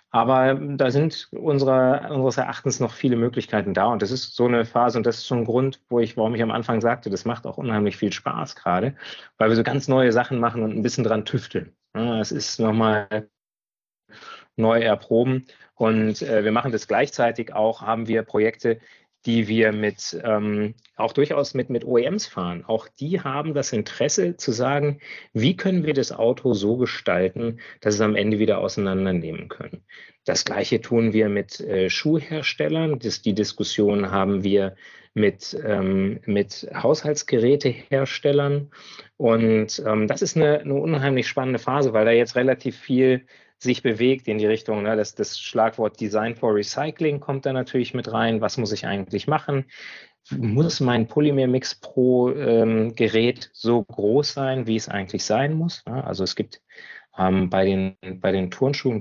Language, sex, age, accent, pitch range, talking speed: German, male, 30-49, German, 110-135 Hz, 170 wpm